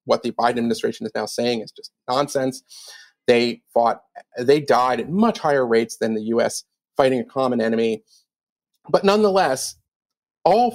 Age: 40-59